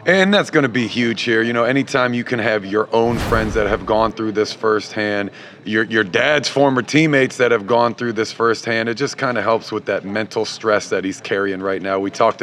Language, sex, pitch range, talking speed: English, male, 105-120 Hz, 235 wpm